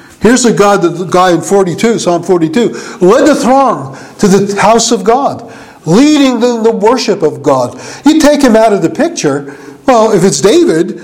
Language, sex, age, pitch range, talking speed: English, male, 50-69, 205-275 Hz, 185 wpm